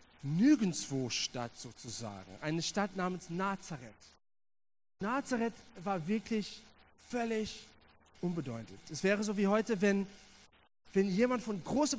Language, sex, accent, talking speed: German, male, German, 110 wpm